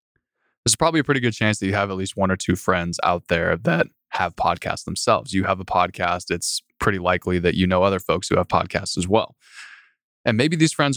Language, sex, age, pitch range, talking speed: English, male, 20-39, 95-115 Hz, 230 wpm